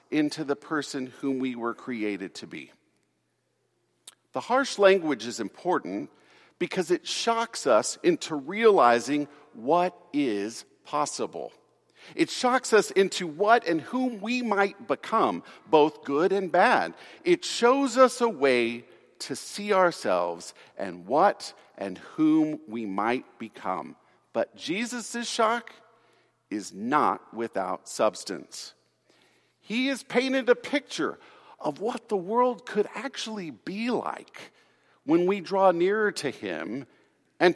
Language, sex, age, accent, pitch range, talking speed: English, male, 50-69, American, 150-245 Hz, 125 wpm